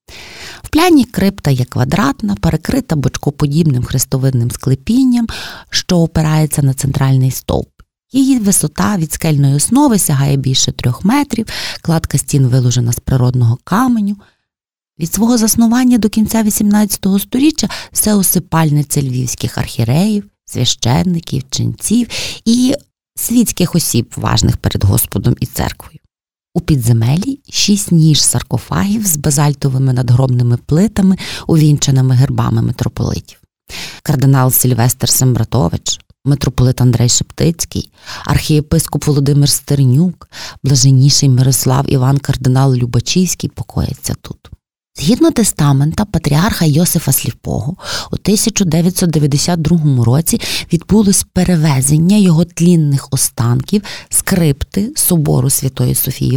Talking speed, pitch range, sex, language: 100 wpm, 130-190 Hz, female, Ukrainian